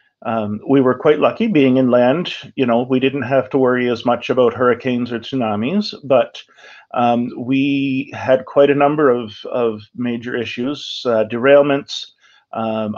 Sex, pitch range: male, 115-135 Hz